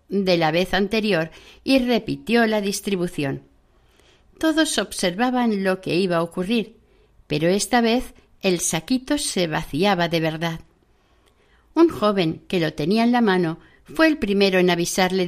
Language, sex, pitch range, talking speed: Spanish, female, 180-240 Hz, 145 wpm